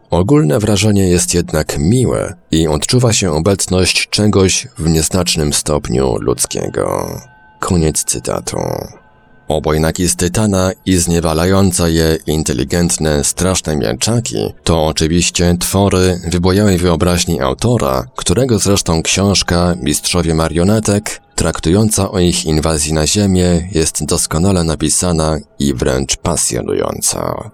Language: Polish